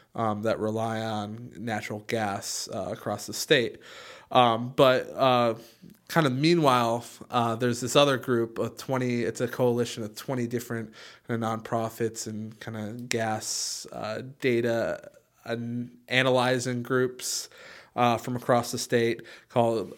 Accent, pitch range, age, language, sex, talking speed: American, 110-125 Hz, 20-39, English, male, 140 wpm